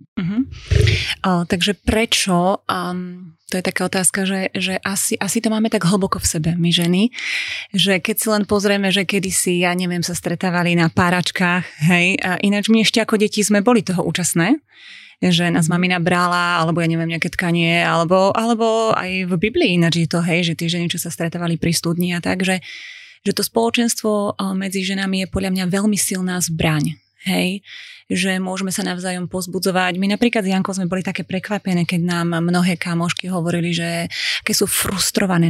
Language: Slovak